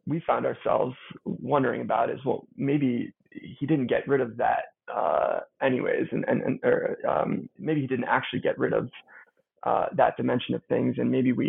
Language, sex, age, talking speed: English, male, 20-39, 190 wpm